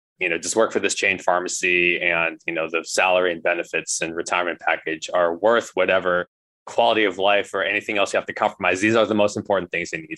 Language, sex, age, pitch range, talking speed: English, male, 20-39, 85-105 Hz, 230 wpm